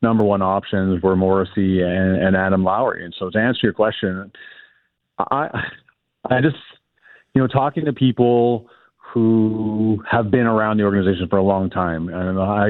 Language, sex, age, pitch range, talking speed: English, male, 40-59, 95-110 Hz, 165 wpm